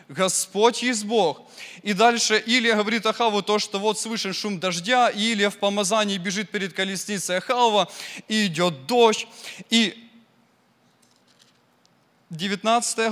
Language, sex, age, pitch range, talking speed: English, male, 20-39, 190-235 Hz, 120 wpm